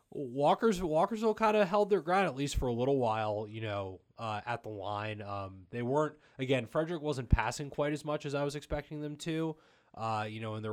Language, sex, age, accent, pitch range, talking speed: English, male, 20-39, American, 100-130 Hz, 225 wpm